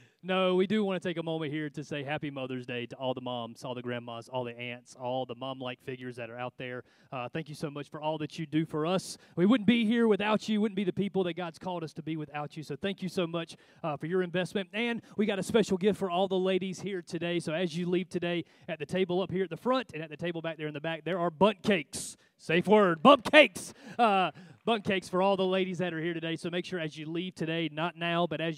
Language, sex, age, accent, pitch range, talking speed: English, male, 30-49, American, 125-180 Hz, 285 wpm